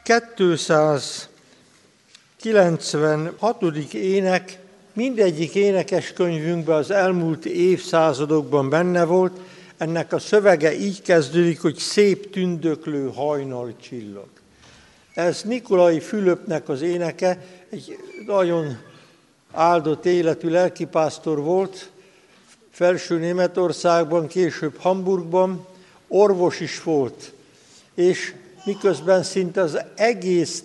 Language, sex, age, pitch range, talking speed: Hungarian, male, 60-79, 160-190 Hz, 80 wpm